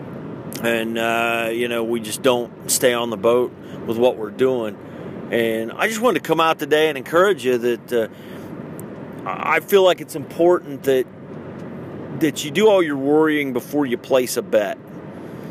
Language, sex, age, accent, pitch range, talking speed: English, male, 40-59, American, 115-155 Hz, 175 wpm